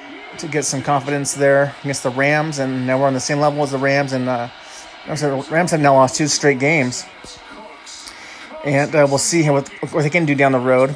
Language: English